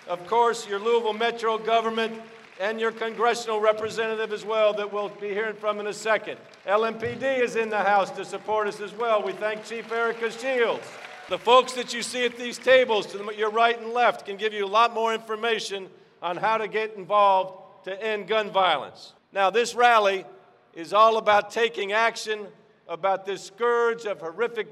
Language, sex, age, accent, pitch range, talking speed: English, male, 50-69, American, 205-235 Hz, 185 wpm